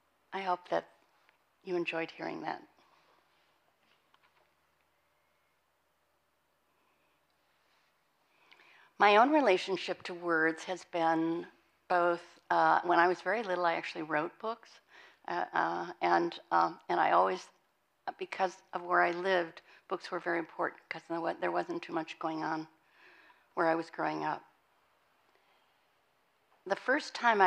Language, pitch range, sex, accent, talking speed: English, 165-190 Hz, female, American, 120 wpm